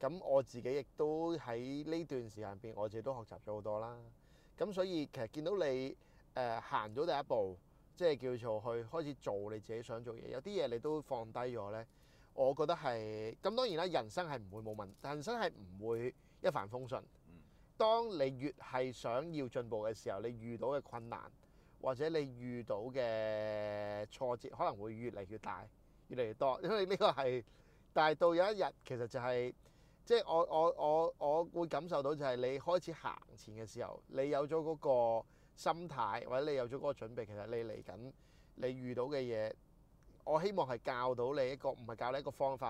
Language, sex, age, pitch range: Chinese, male, 30-49, 115-150 Hz